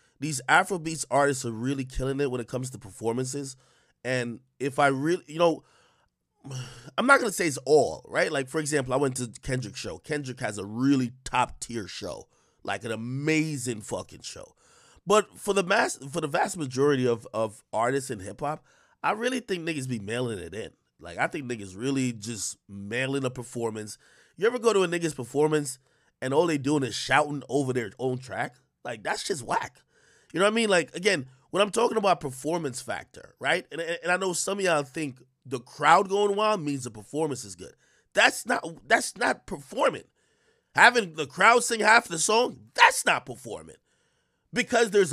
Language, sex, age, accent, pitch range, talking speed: English, male, 30-49, American, 125-180 Hz, 195 wpm